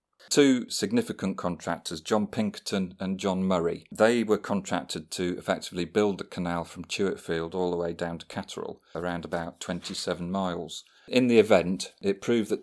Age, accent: 40-59, British